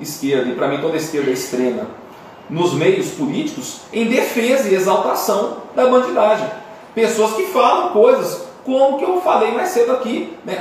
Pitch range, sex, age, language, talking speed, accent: 205-265 Hz, male, 40-59, Portuguese, 165 wpm, Brazilian